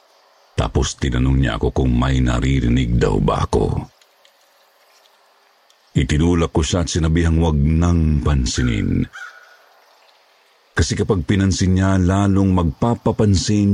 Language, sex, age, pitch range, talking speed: Filipino, male, 50-69, 80-100 Hz, 90 wpm